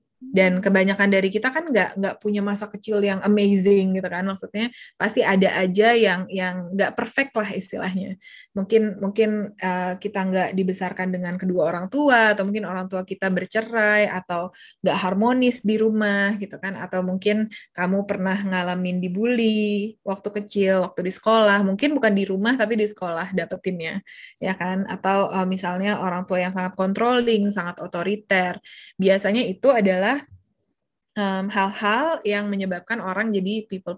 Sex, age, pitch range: female, 20-39, 190-215 Hz